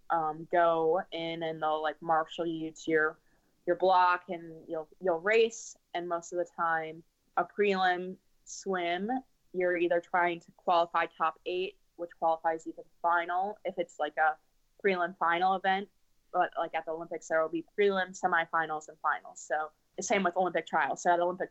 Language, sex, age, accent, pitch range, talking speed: English, female, 20-39, American, 165-190 Hz, 180 wpm